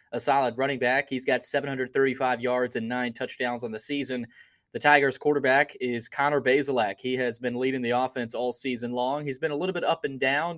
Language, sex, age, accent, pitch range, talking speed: English, male, 20-39, American, 125-150 Hz, 210 wpm